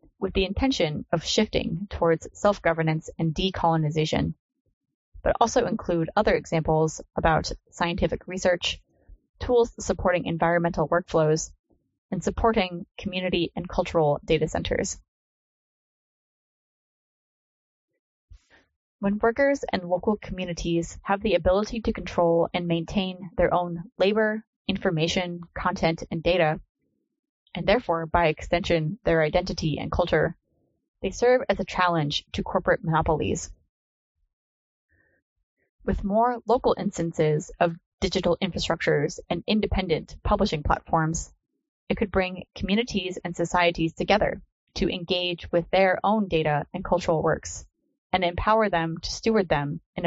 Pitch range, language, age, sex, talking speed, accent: 165-200 Hz, English, 20-39, female, 115 wpm, American